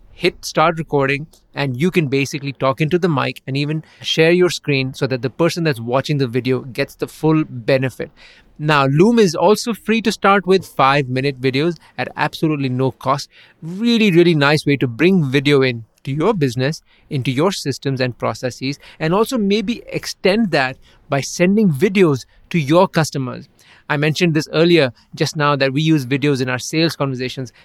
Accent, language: Indian, English